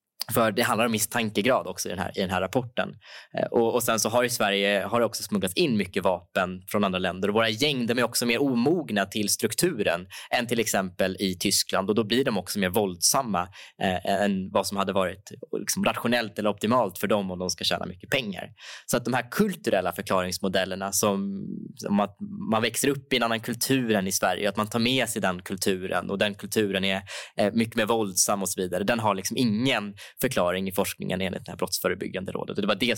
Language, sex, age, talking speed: Swedish, male, 20-39, 220 wpm